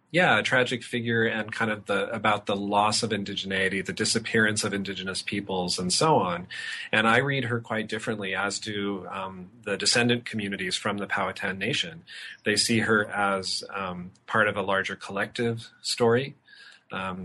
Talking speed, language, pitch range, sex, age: 170 wpm, English, 95-110 Hz, male, 30-49